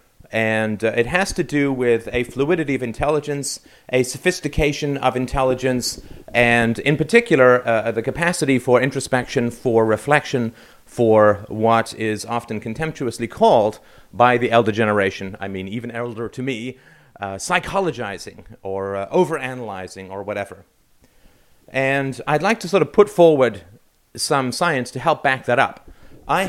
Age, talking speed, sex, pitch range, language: 40-59, 145 wpm, male, 115-150 Hz, English